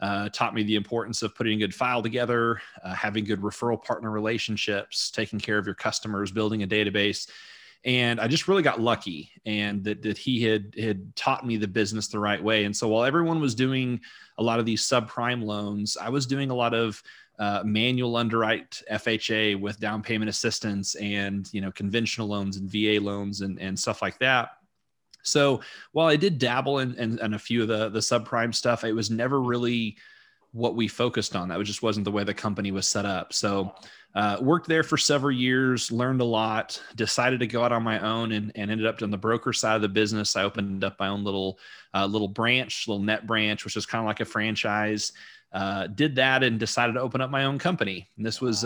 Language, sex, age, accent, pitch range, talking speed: English, male, 30-49, American, 105-120 Hz, 220 wpm